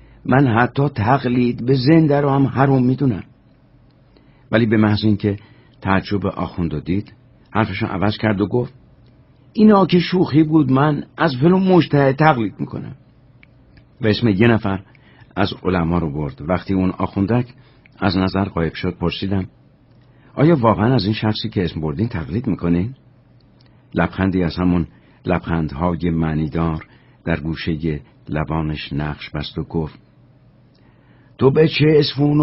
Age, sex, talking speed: 60-79, male, 145 wpm